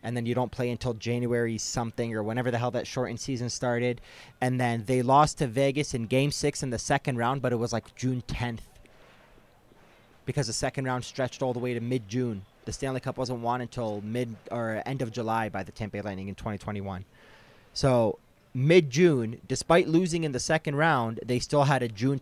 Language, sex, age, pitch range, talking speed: English, male, 20-39, 115-135 Hz, 210 wpm